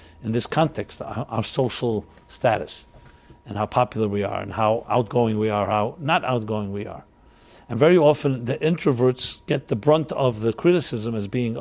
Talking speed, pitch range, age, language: 175 wpm, 110-145 Hz, 60-79, English